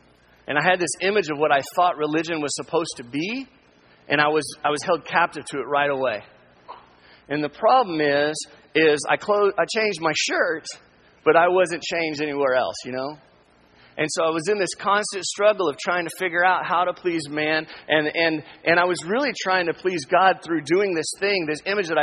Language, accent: English, American